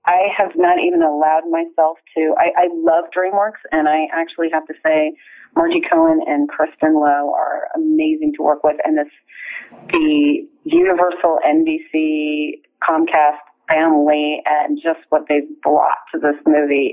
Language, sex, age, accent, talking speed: English, female, 30-49, American, 150 wpm